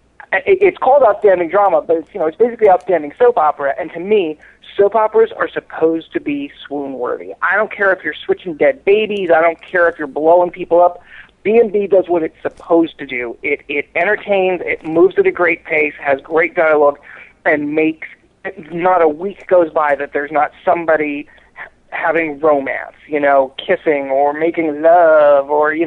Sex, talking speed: male, 180 wpm